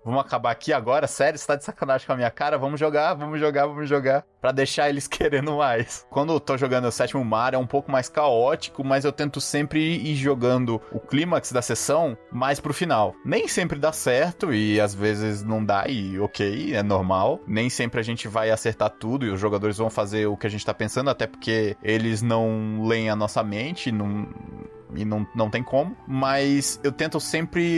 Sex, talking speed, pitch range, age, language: male, 210 wpm, 110-140 Hz, 20-39, Portuguese